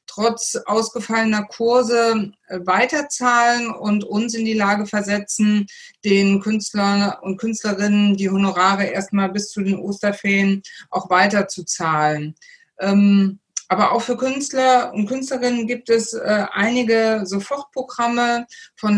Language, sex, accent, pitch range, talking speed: German, female, German, 200-240 Hz, 110 wpm